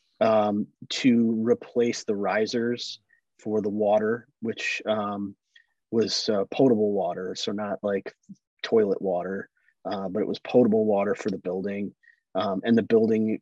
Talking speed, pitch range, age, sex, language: 145 wpm, 95-120 Hz, 30-49, male, English